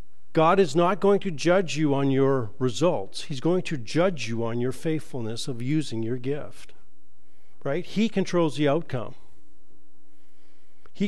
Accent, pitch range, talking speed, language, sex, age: American, 115-170 Hz, 150 wpm, English, male, 50-69